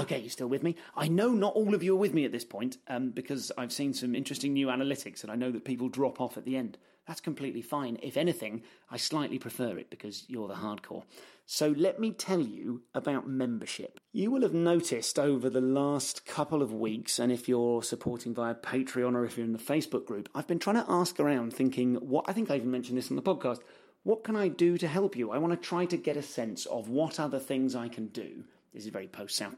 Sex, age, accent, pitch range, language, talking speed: male, 30-49, British, 115-150 Hz, English, 245 wpm